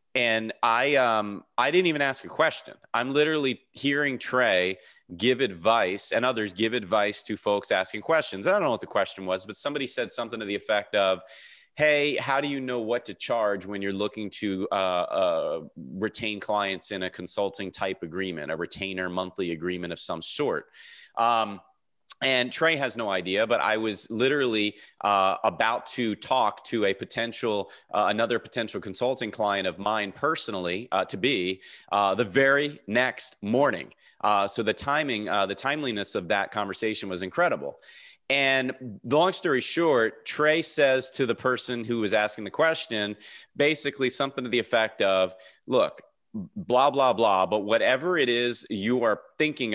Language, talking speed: English, 170 wpm